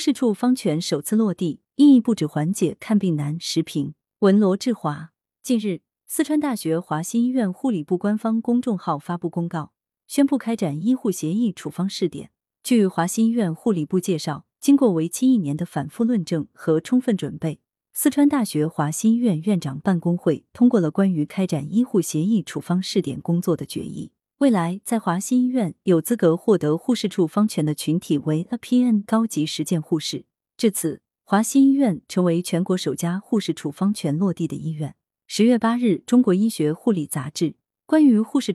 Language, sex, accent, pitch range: Chinese, female, native, 160-225 Hz